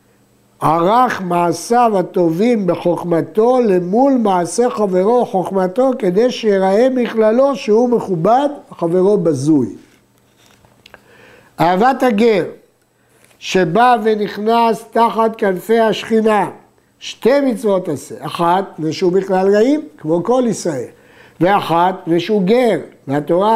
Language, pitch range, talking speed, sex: Hebrew, 175-225 Hz, 95 wpm, male